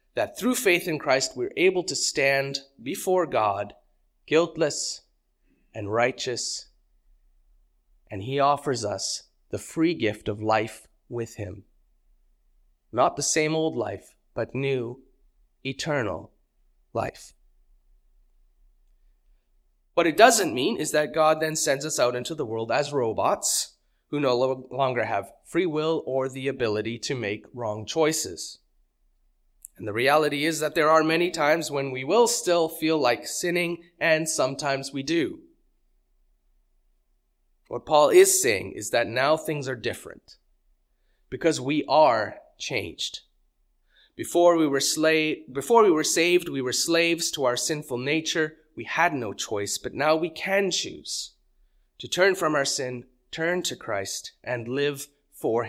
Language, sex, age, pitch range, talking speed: English, male, 30-49, 110-160 Hz, 140 wpm